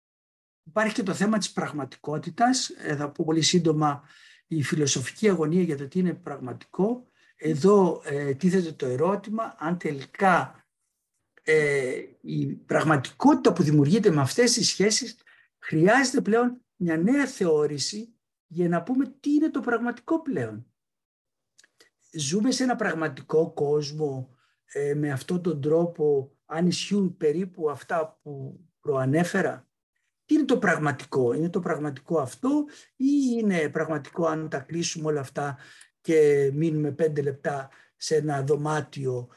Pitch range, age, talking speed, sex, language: 150-220 Hz, 60-79, 125 wpm, male, Greek